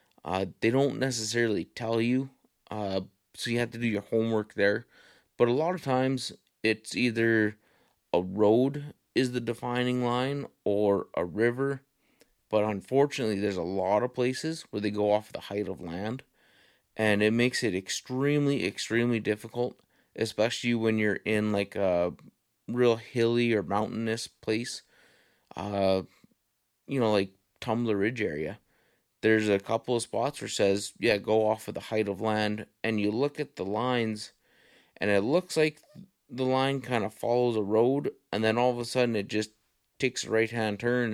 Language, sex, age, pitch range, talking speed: English, male, 30-49, 105-120 Hz, 170 wpm